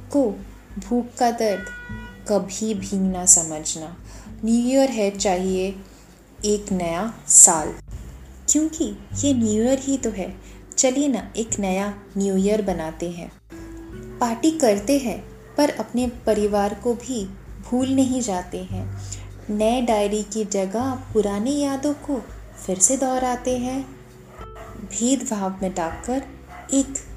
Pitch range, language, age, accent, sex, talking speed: 180-265 Hz, Hindi, 20-39, native, female, 130 wpm